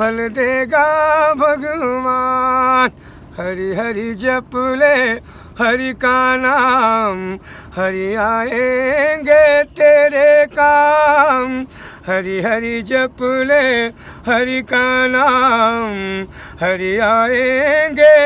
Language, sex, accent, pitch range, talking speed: Hindi, male, native, 230-290 Hz, 75 wpm